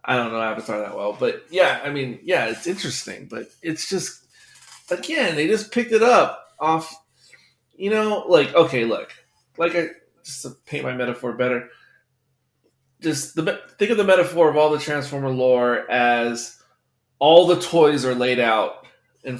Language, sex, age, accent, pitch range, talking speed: English, male, 20-39, American, 130-165 Hz, 165 wpm